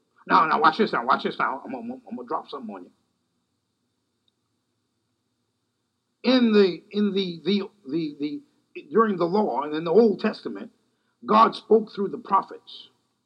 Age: 50-69